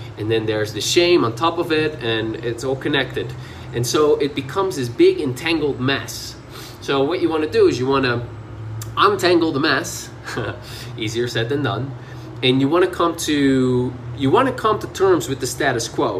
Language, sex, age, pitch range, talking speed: English, male, 20-39, 120-160 Hz, 200 wpm